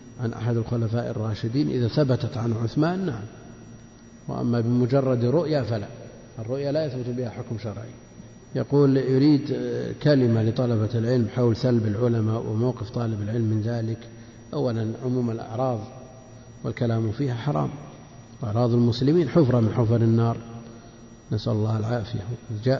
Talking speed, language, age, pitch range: 125 wpm, Arabic, 50-69, 115-130 Hz